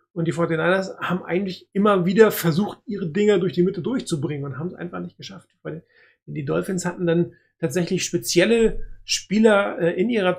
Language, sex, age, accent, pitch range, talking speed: German, male, 30-49, German, 165-195 Hz, 170 wpm